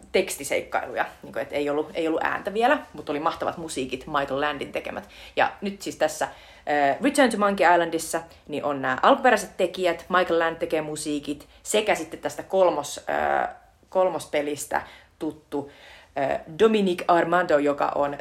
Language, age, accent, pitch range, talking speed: Finnish, 30-49, native, 155-210 Hz, 155 wpm